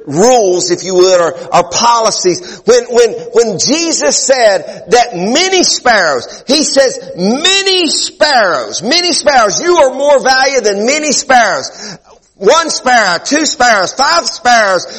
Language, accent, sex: English, American, male